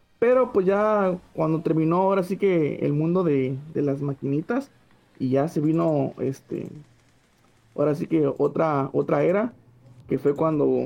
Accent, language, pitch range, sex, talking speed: Venezuelan, Spanish, 150-190 Hz, male, 155 wpm